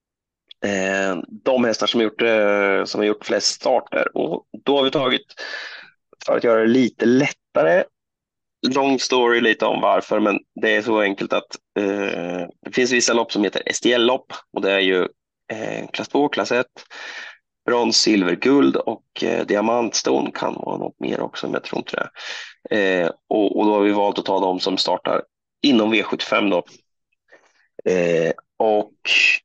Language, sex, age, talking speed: Swedish, male, 30-49, 165 wpm